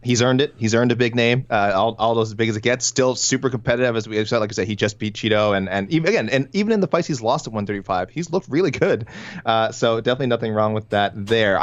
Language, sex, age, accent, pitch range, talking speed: English, male, 20-39, American, 100-130 Hz, 275 wpm